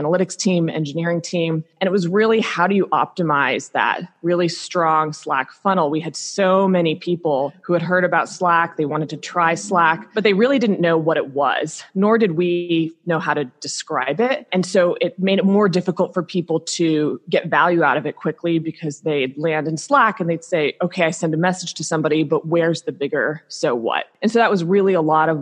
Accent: American